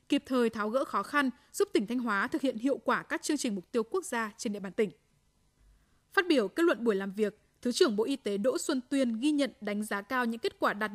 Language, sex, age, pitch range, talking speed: Vietnamese, female, 20-39, 225-295 Hz, 270 wpm